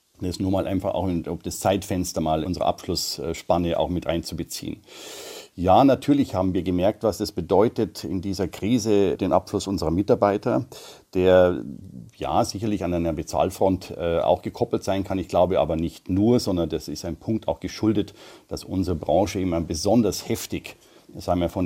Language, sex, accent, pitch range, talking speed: German, male, German, 85-105 Hz, 165 wpm